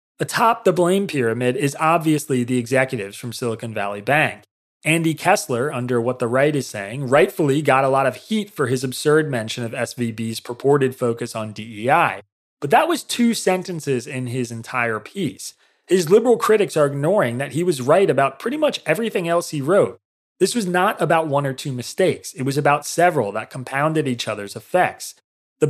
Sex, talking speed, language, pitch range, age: male, 185 wpm, English, 120-165 Hz, 30-49